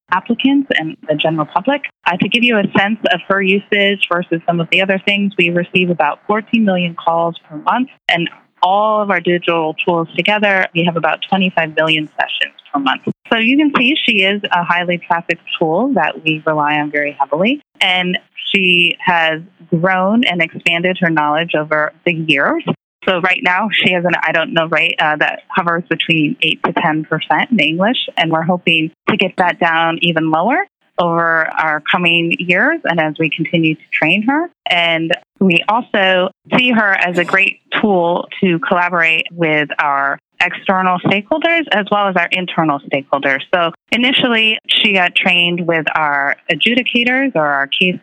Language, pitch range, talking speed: English, 165-200 Hz, 175 wpm